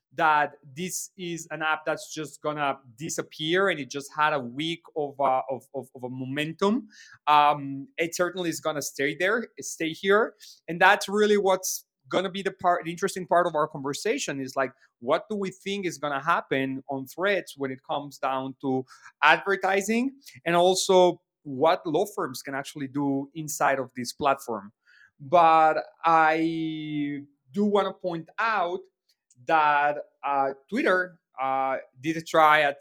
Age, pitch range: 30-49, 135-175 Hz